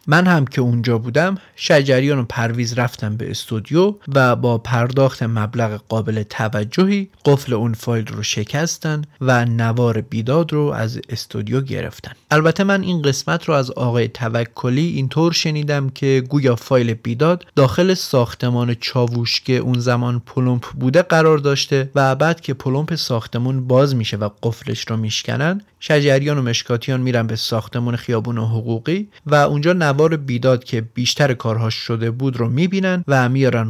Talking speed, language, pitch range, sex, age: 155 wpm, Persian, 115-150 Hz, male, 30-49